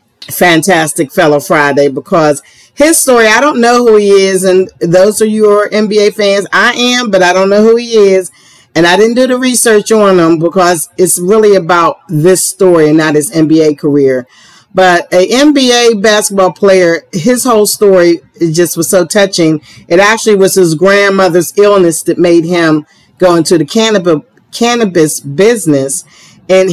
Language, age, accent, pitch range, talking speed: English, 40-59, American, 160-200 Hz, 165 wpm